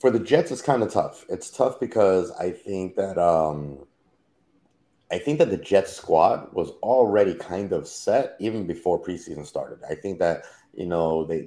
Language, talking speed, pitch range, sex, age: English, 185 wpm, 80-90 Hz, male, 30-49